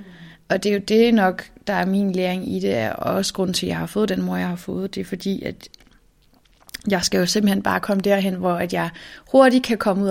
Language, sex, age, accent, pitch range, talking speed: Danish, female, 30-49, native, 185-220 Hz, 255 wpm